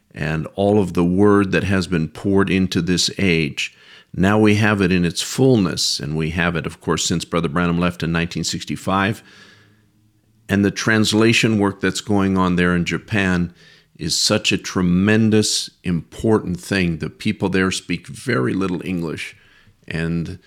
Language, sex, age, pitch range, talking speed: English, male, 50-69, 90-105 Hz, 160 wpm